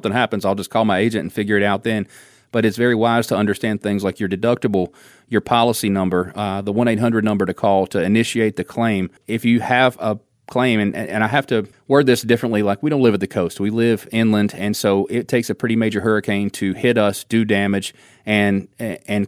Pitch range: 100-115 Hz